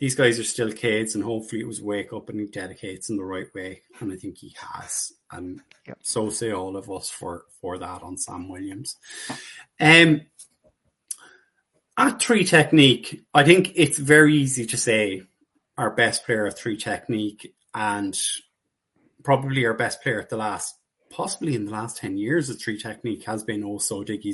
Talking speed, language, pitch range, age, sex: 180 wpm, English, 110-140 Hz, 30-49, male